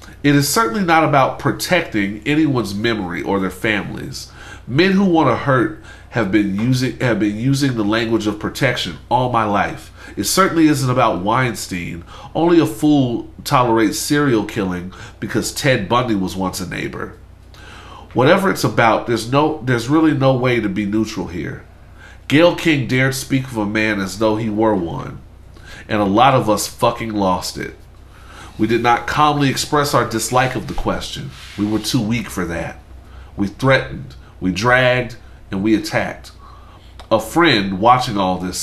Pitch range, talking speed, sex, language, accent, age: 95-130 Hz, 170 wpm, male, English, American, 40-59